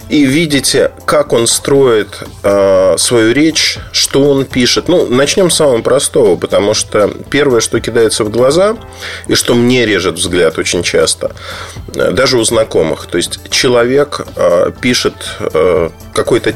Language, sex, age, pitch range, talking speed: Russian, male, 30-49, 95-155 Hz, 135 wpm